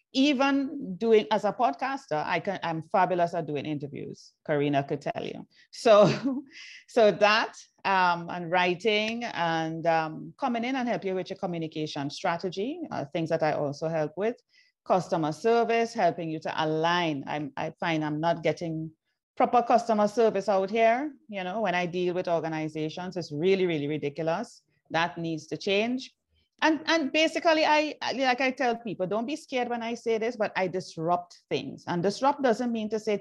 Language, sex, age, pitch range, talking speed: English, female, 30-49, 165-235 Hz, 175 wpm